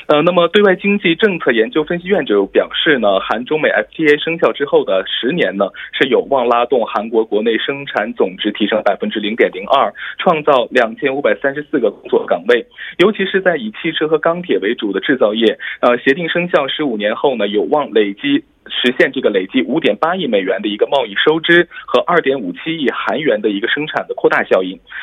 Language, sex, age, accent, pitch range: Korean, male, 20-39, Chinese, 150-225 Hz